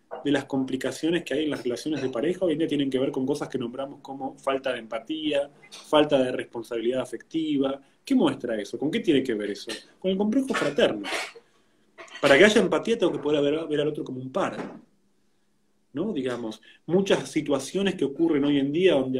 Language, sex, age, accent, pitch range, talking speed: Spanish, male, 20-39, Argentinian, 130-175 Hz, 205 wpm